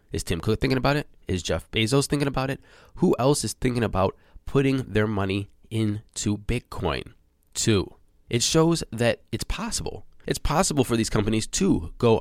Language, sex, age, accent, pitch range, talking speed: English, male, 20-39, American, 95-130 Hz, 170 wpm